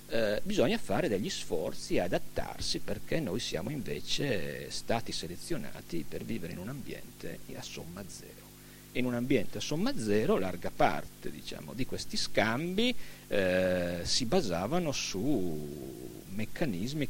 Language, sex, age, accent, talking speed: Italian, male, 50-69, native, 135 wpm